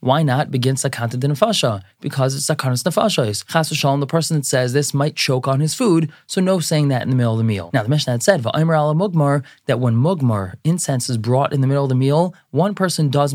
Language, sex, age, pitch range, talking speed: English, male, 20-39, 120-155 Hz, 225 wpm